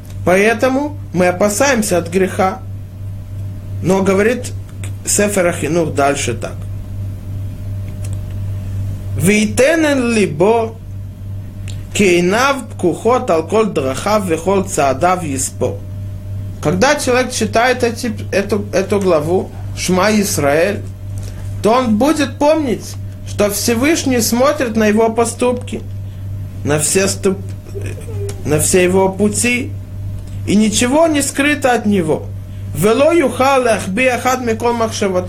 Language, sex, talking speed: Russian, male, 80 wpm